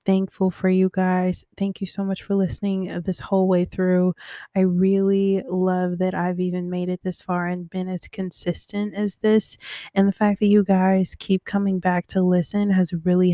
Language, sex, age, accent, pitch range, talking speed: English, female, 20-39, American, 180-195 Hz, 195 wpm